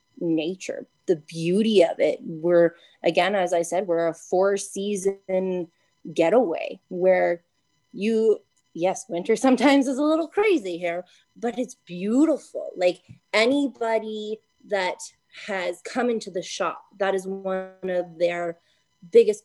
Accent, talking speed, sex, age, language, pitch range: American, 130 wpm, female, 20-39, English, 170-210 Hz